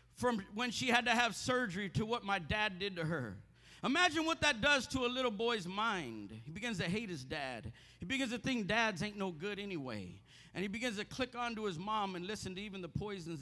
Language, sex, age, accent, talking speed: English, male, 50-69, American, 235 wpm